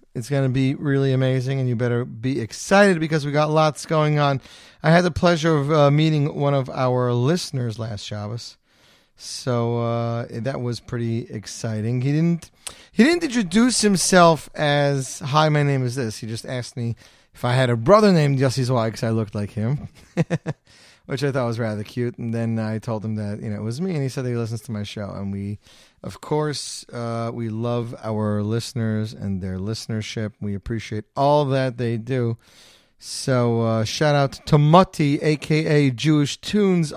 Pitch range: 115-155 Hz